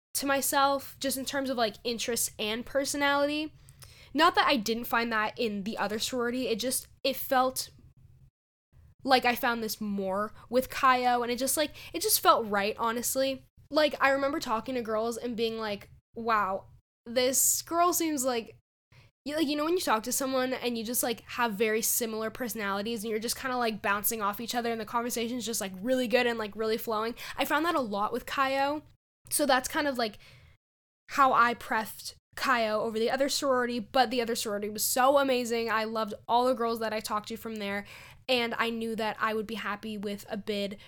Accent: American